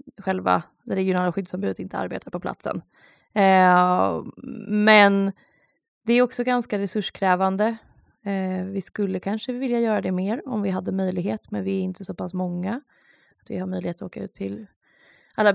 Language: Swedish